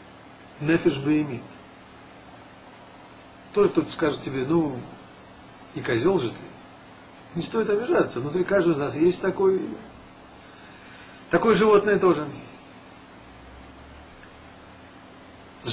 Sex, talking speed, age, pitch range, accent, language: male, 90 wpm, 40-59, 125-170 Hz, native, Russian